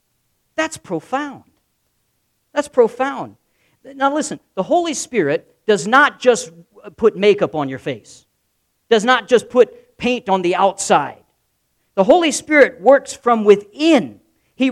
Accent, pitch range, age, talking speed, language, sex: American, 180-270 Hz, 50-69, 130 wpm, English, male